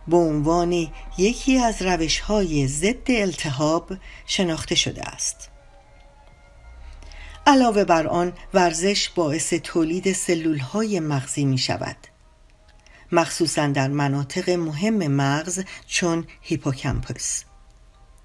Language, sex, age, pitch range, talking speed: Persian, female, 50-69, 145-185 Hz, 90 wpm